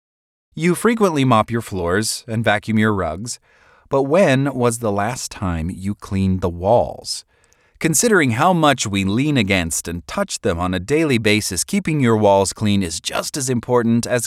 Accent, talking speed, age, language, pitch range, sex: American, 170 wpm, 30-49, English, 100-145 Hz, male